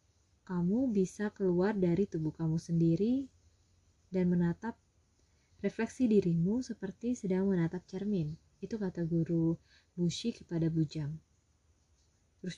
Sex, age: female, 20-39